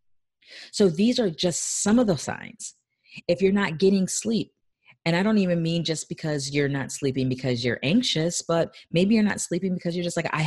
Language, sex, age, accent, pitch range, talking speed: English, female, 30-49, American, 130-185 Hz, 205 wpm